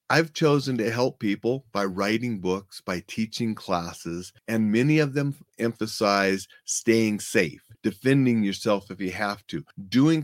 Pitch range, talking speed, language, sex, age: 105-135 Hz, 145 wpm, English, male, 40-59